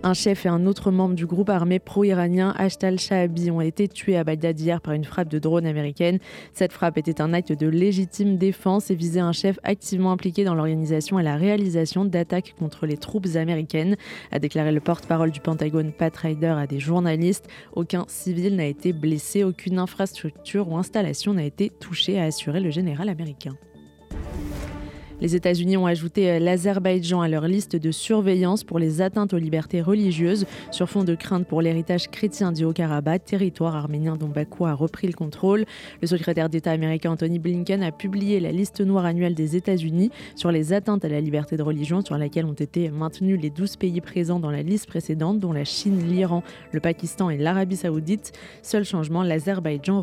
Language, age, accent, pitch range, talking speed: Italian, 20-39, French, 160-190 Hz, 185 wpm